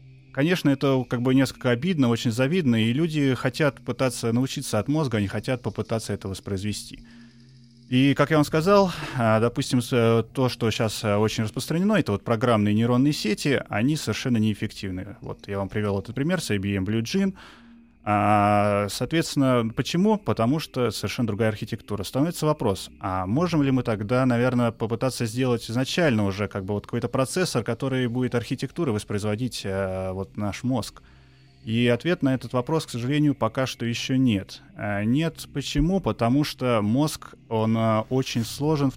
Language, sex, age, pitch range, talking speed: Russian, male, 30-49, 110-135 Hz, 155 wpm